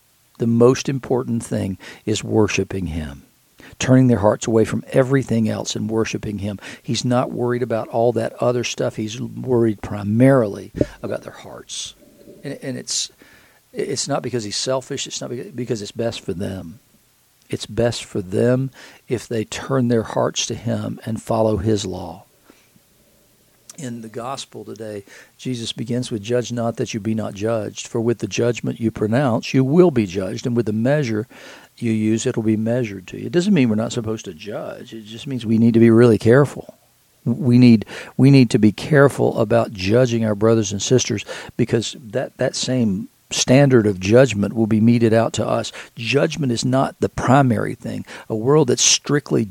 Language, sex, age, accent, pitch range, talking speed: English, male, 50-69, American, 110-125 Hz, 180 wpm